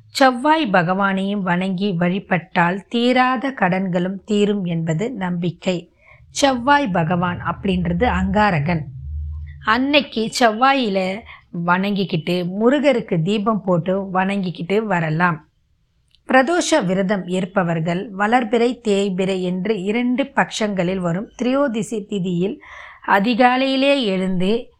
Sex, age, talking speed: female, 20-39, 80 wpm